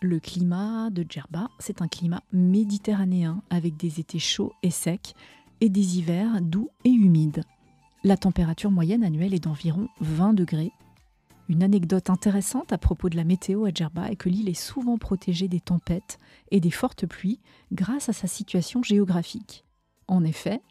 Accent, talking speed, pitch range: French, 165 wpm, 170-205 Hz